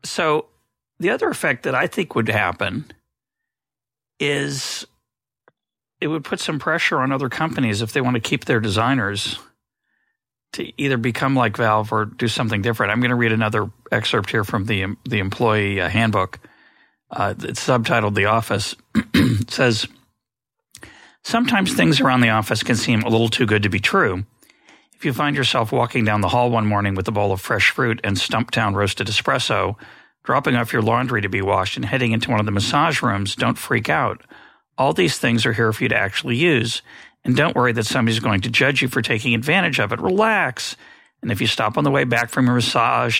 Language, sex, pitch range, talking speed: English, male, 105-125 Hz, 195 wpm